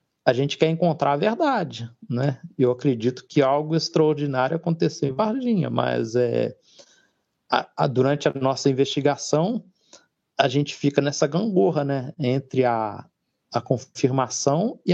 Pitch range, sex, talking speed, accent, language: 125-160 Hz, male, 135 wpm, Brazilian, Portuguese